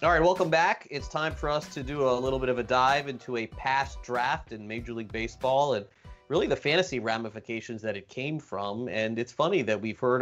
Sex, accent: male, American